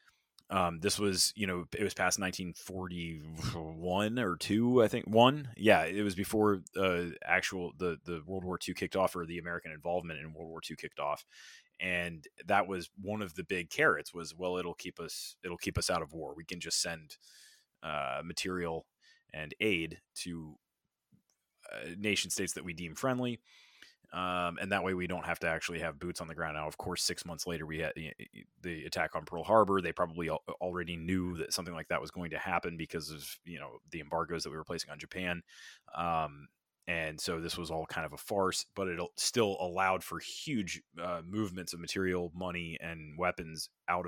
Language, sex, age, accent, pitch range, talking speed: English, male, 20-39, American, 85-95 Hz, 205 wpm